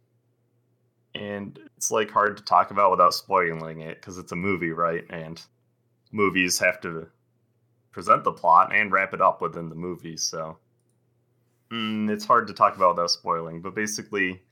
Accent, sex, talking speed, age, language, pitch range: American, male, 160 wpm, 20-39, English, 90-120 Hz